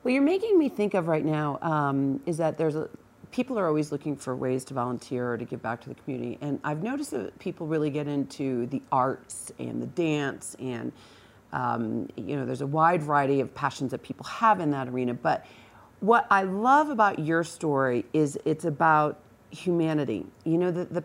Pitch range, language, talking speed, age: 140-165 Hz, English, 205 wpm, 40-59